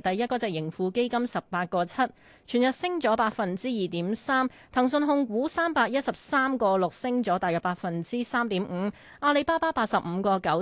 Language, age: Chinese, 30-49